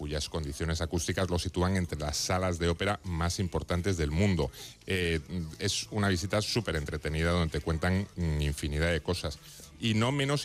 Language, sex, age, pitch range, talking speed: Spanish, male, 30-49, 85-110 Hz, 165 wpm